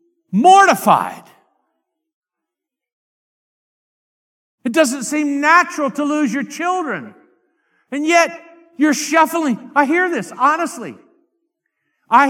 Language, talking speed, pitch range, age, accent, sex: English, 90 wpm, 210-310 Hz, 50-69, American, male